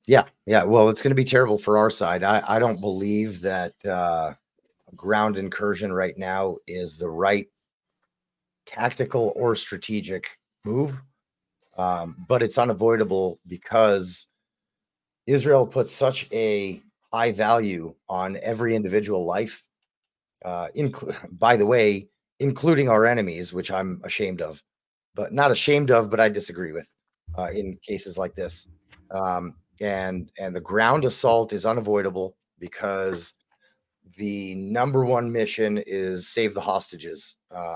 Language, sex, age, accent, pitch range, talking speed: English, male, 30-49, American, 95-115 Hz, 135 wpm